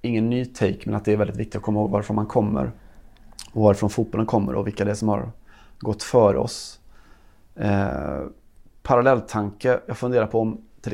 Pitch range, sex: 105-115 Hz, male